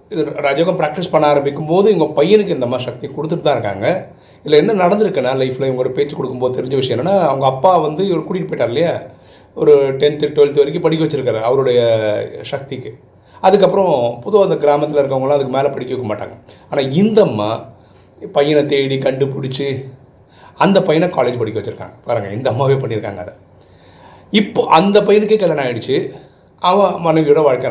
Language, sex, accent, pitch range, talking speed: Tamil, male, native, 120-155 Hz, 150 wpm